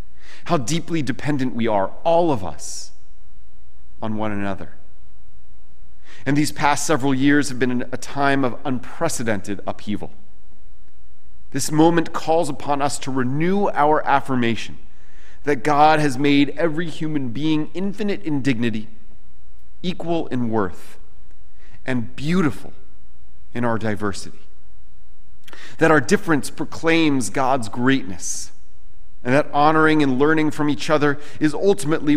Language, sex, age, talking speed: English, male, 40-59, 125 wpm